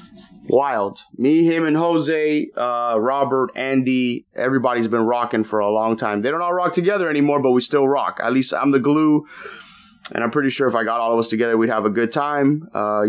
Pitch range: 115-135 Hz